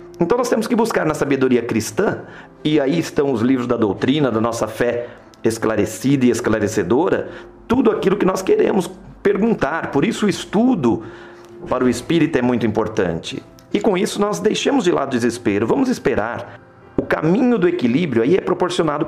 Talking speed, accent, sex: 170 wpm, Brazilian, male